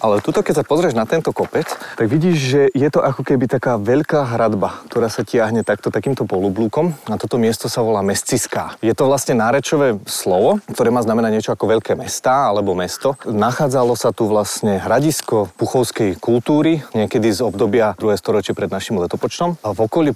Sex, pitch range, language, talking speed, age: male, 110-140 Hz, Slovak, 180 wpm, 30-49